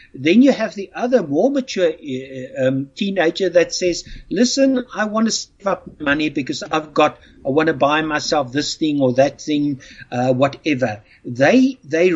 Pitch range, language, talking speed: 145-195 Hz, English, 180 wpm